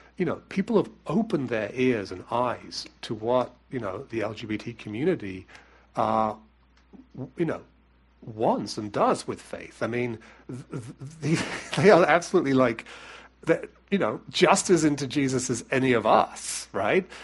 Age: 40-59